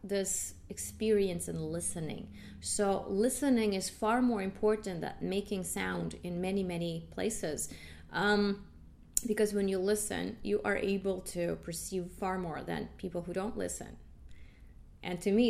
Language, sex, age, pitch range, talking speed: English, female, 30-49, 180-230 Hz, 145 wpm